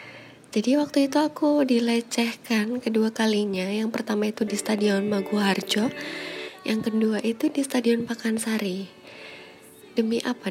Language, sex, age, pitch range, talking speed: Indonesian, female, 20-39, 200-245 Hz, 120 wpm